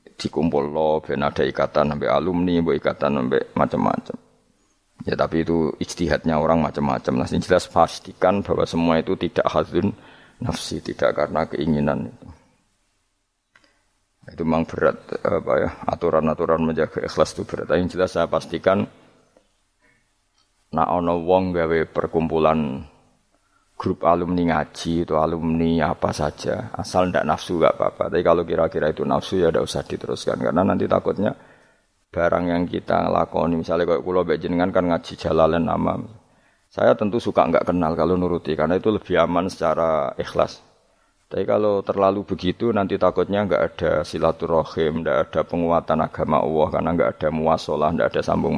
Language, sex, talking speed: Malay, male, 150 wpm